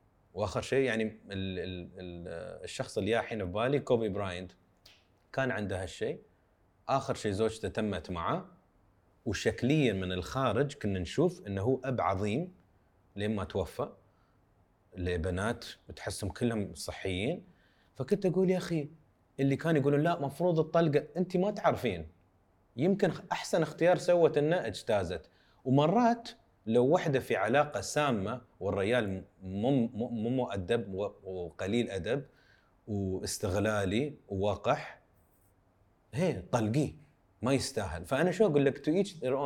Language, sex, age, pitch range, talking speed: English, male, 30-49, 95-150 Hz, 115 wpm